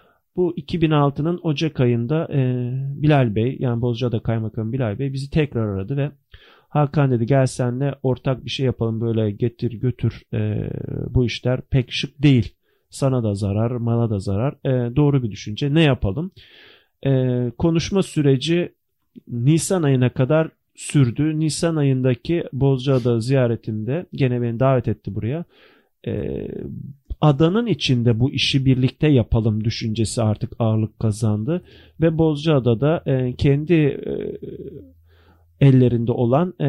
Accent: native